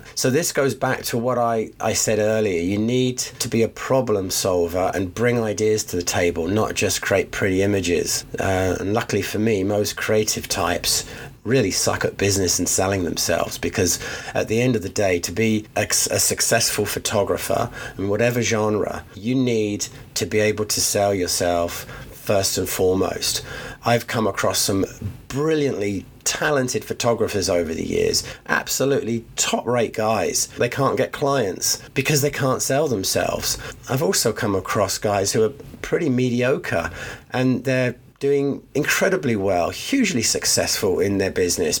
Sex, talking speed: male, 160 wpm